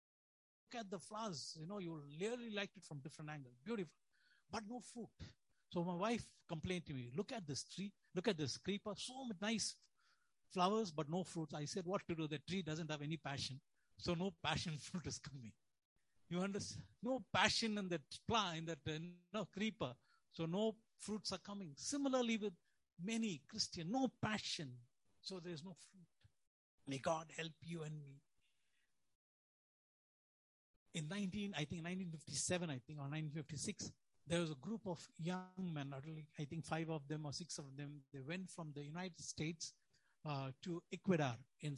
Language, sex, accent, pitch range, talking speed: English, male, Indian, 150-190 Hz, 180 wpm